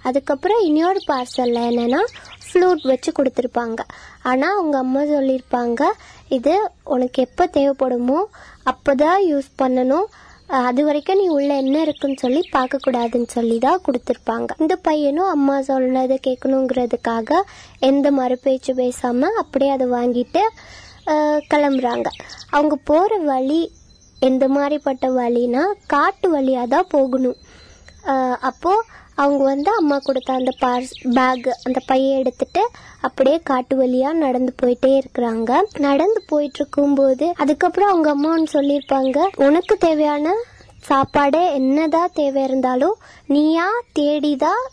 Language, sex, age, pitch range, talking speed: Tamil, male, 20-39, 260-310 Hz, 110 wpm